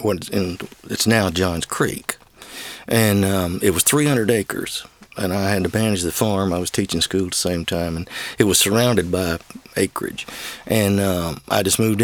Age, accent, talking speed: 50-69, American, 180 wpm